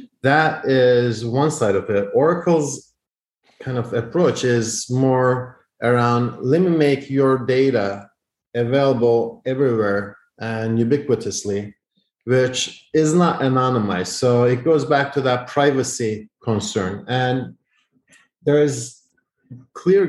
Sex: male